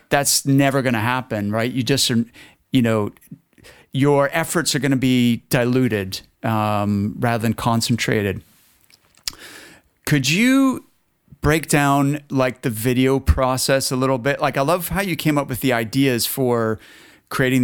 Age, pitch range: 40-59, 115-140 Hz